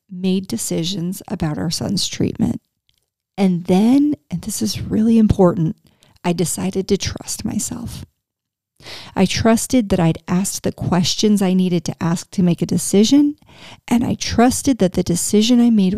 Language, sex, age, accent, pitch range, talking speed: English, female, 40-59, American, 180-220 Hz, 155 wpm